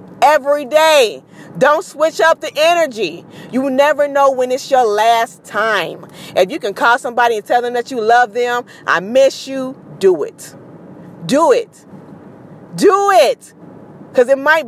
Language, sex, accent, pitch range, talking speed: English, female, American, 190-265 Hz, 165 wpm